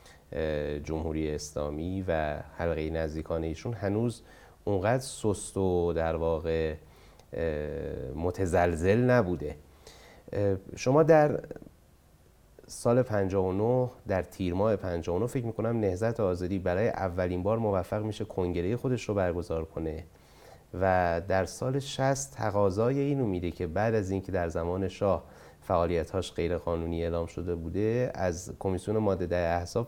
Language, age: Persian, 30-49